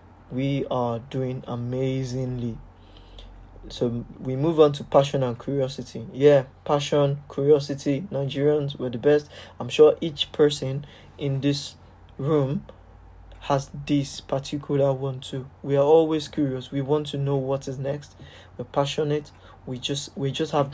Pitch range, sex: 110-145 Hz, male